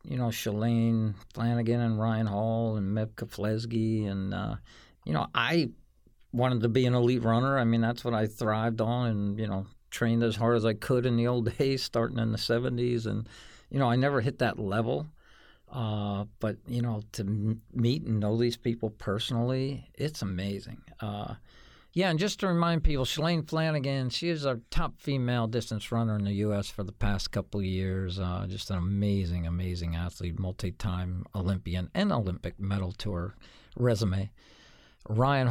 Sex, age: male, 50-69